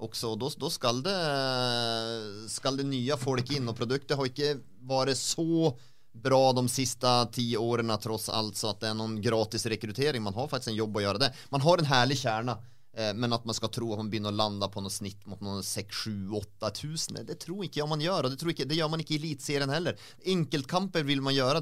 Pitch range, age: 115-145 Hz, 30-49